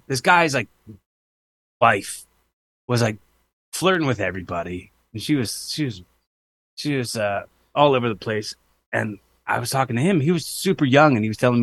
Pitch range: 95-130 Hz